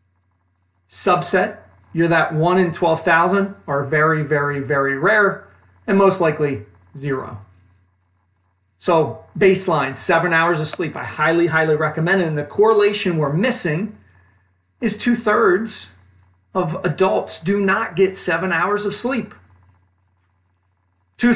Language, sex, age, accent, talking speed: English, male, 40-59, American, 125 wpm